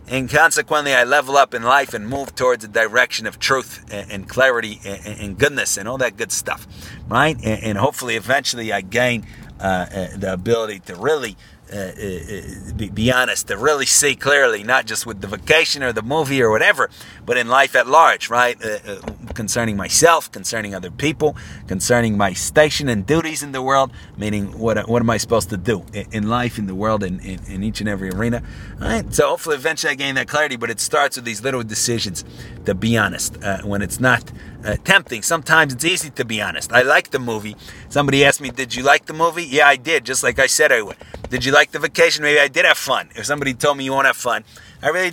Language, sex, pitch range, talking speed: English, male, 105-140 Hz, 220 wpm